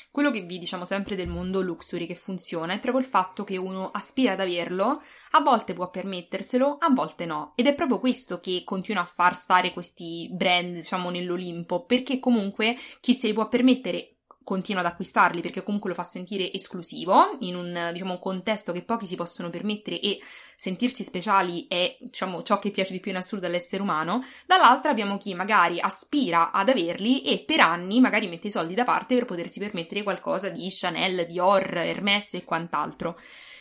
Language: English